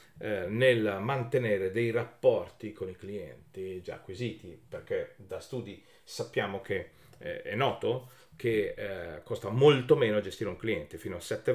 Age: 40-59